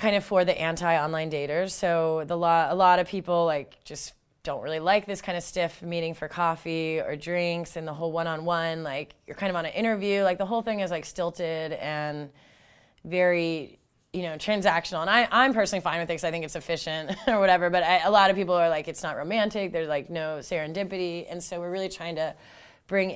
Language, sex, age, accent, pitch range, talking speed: English, female, 20-39, American, 155-185 Hz, 215 wpm